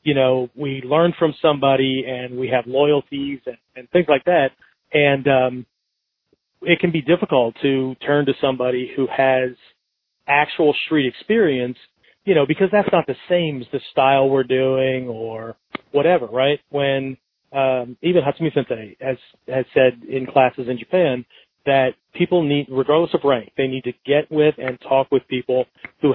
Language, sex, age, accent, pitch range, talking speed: English, male, 40-59, American, 130-150 Hz, 170 wpm